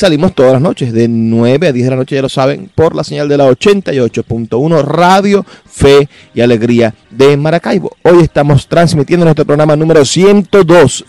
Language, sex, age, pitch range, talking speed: Spanish, male, 30-49, 120-150 Hz, 180 wpm